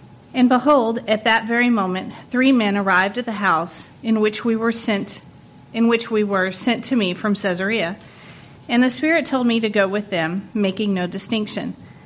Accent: American